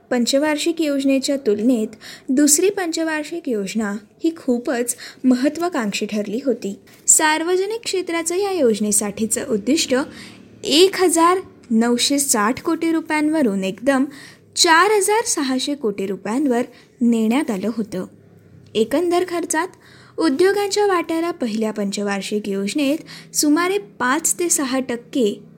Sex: female